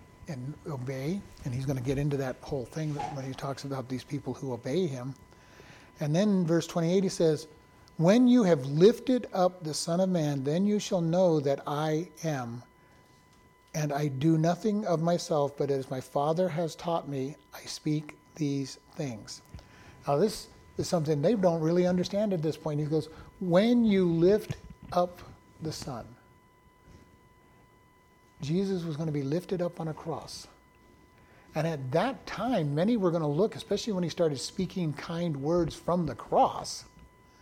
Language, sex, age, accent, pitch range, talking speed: English, male, 60-79, American, 140-175 Hz, 170 wpm